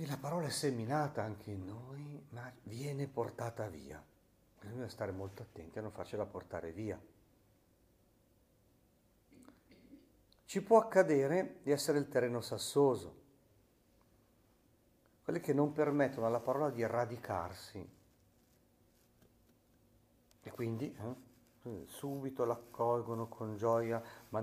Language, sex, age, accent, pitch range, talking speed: Italian, male, 50-69, native, 95-125 Hz, 110 wpm